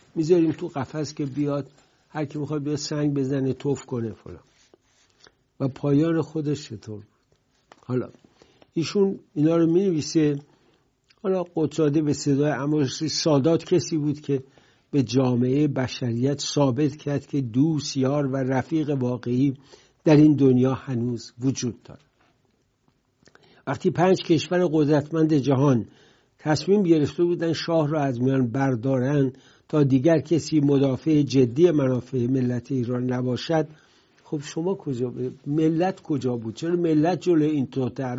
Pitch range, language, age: 130-160 Hz, English, 60-79